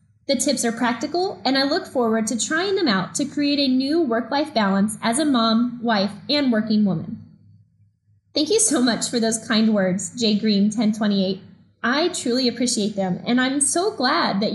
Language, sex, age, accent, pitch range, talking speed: English, female, 10-29, American, 195-270 Hz, 180 wpm